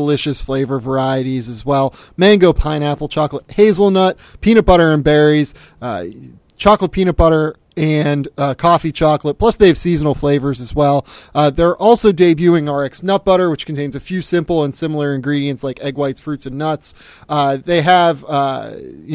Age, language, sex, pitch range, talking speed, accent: 30-49, English, male, 140-175 Hz, 165 wpm, American